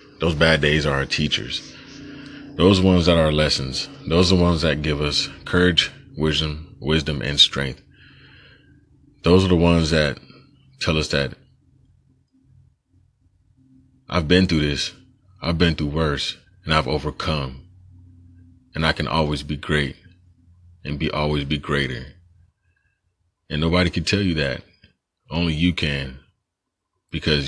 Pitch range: 75-105 Hz